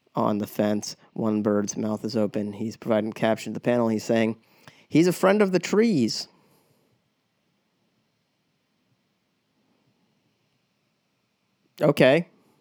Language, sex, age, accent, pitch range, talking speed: English, male, 30-49, American, 110-125 Hz, 110 wpm